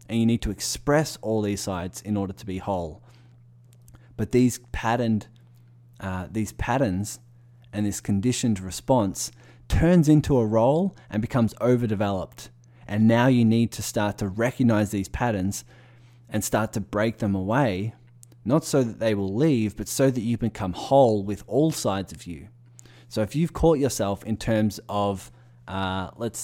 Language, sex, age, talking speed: English, male, 20-39, 165 wpm